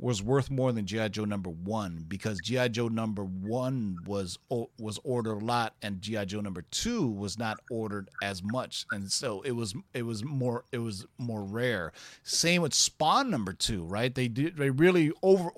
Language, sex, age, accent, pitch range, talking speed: English, male, 40-59, American, 110-165 Hz, 195 wpm